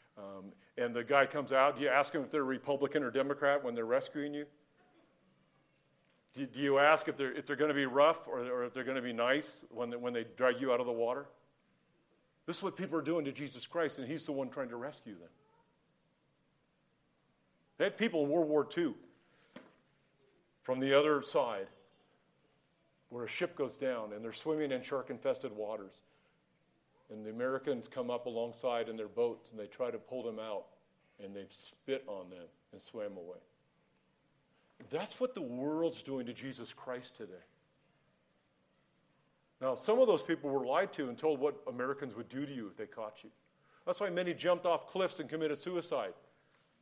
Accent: American